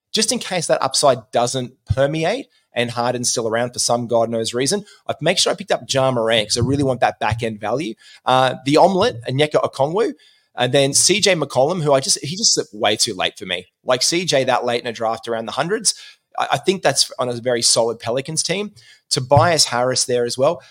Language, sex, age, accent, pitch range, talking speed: English, male, 20-39, Australian, 120-150 Hz, 215 wpm